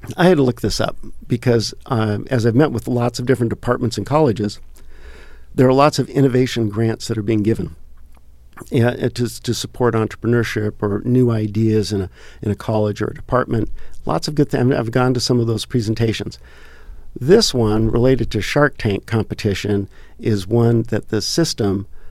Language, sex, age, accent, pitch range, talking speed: English, male, 50-69, American, 105-125 Hz, 185 wpm